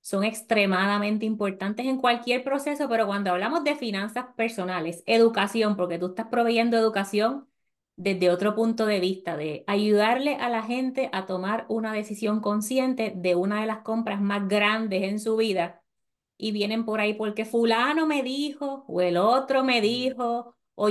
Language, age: Spanish, 20-39